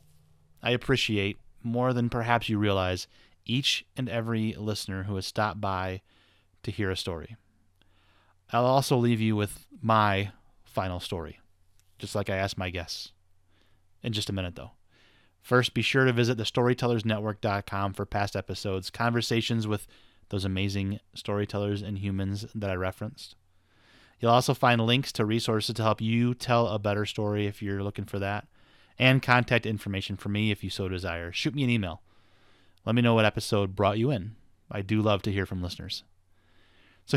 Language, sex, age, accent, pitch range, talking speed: English, male, 30-49, American, 95-115 Hz, 170 wpm